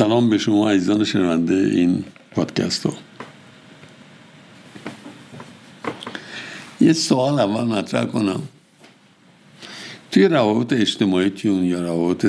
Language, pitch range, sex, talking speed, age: Persian, 95-125 Hz, male, 85 wpm, 60-79